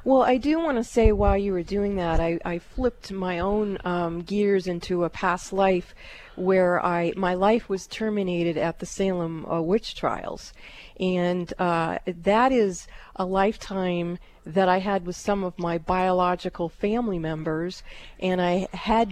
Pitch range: 175-210 Hz